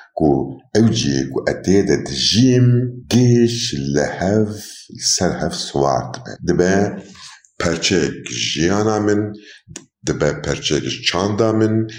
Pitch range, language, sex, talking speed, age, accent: 85-115 Hz, Turkish, male, 95 wpm, 50-69, native